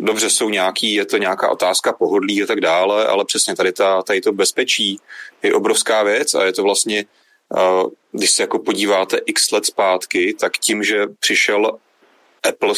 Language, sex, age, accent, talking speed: Czech, male, 30-49, native, 170 wpm